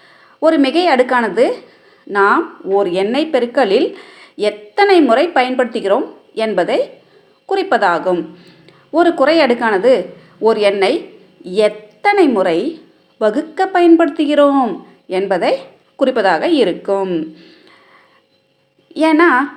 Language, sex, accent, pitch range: Tamil, female, native, 200-340 Hz